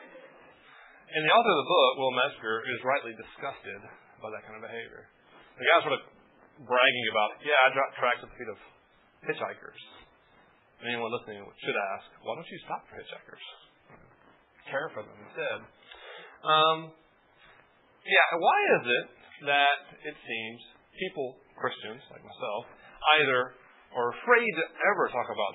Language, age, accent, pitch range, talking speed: English, 30-49, American, 120-165 Hz, 150 wpm